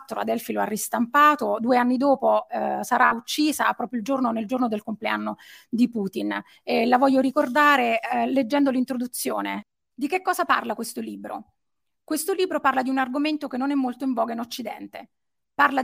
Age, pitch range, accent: 30-49, 230-280 Hz, native